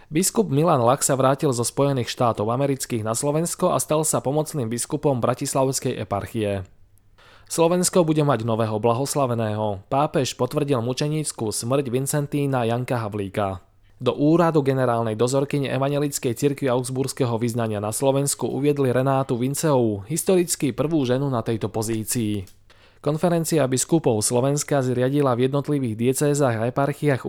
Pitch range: 115-140 Hz